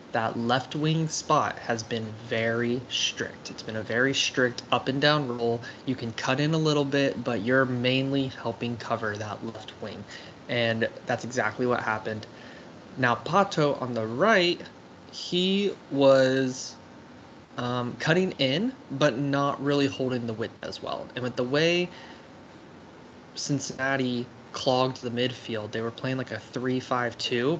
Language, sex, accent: English, male, American